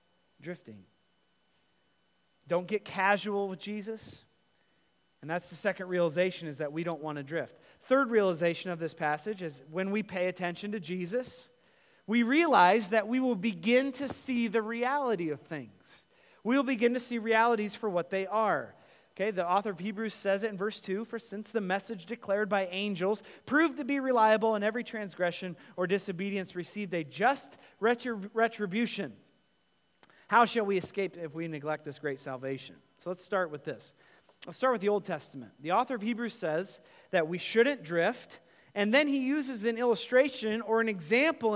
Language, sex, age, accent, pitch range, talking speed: English, male, 30-49, American, 180-240 Hz, 175 wpm